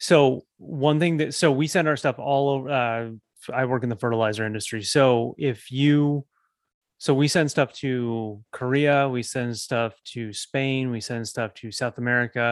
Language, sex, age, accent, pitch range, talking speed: English, male, 30-49, American, 115-135 Hz, 180 wpm